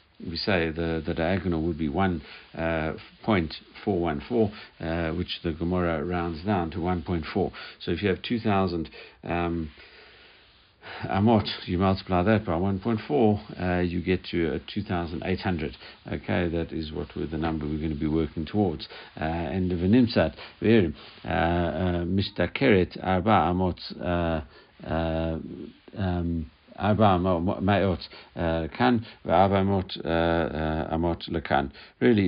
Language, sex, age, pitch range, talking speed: English, male, 60-79, 80-95 Hz, 100 wpm